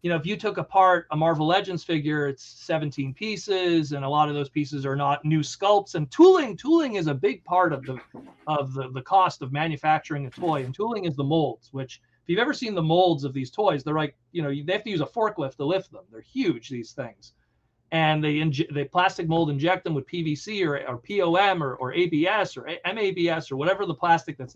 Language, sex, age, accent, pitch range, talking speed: English, male, 40-59, American, 140-180 Hz, 230 wpm